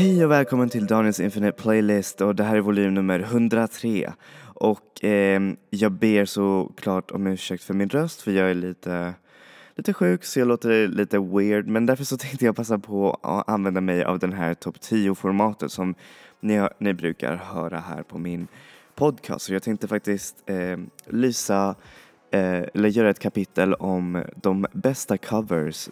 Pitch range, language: 90-105 Hz, Swedish